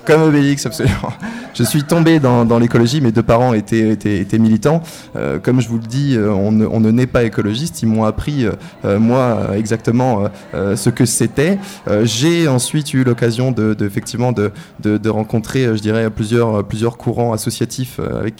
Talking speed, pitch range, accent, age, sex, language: 190 wpm, 115-145 Hz, French, 20-39, male, French